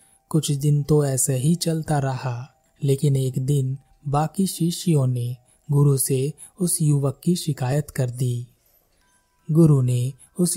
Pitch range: 130-165 Hz